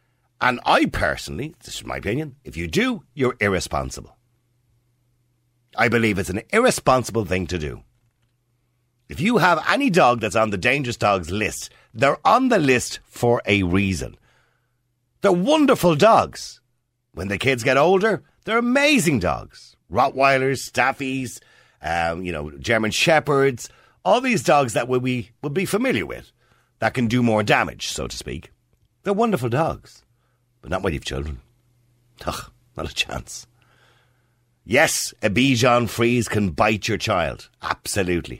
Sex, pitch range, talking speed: male, 95-125 Hz, 145 wpm